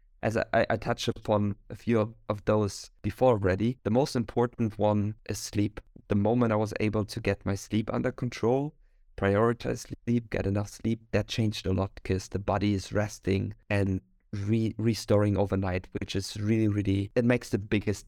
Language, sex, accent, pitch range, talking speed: English, male, German, 100-110 Hz, 180 wpm